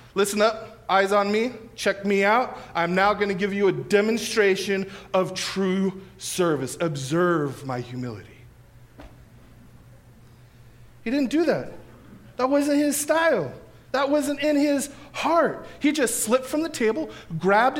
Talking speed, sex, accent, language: 140 wpm, male, American, English